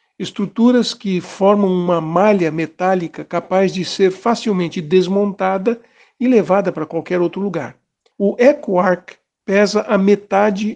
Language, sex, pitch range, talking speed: Portuguese, male, 175-200 Hz, 125 wpm